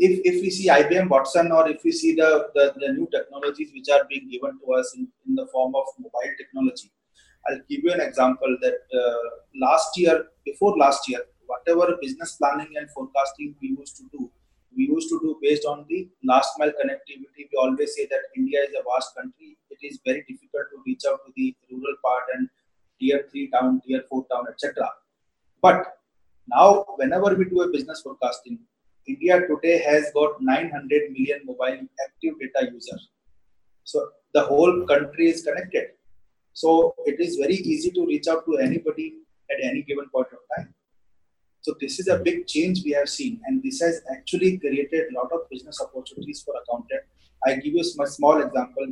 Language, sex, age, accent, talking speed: English, male, 30-49, Indian, 190 wpm